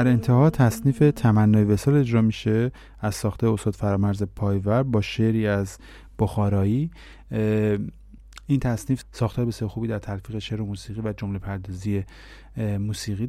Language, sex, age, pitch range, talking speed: Persian, male, 30-49, 100-120 Hz, 135 wpm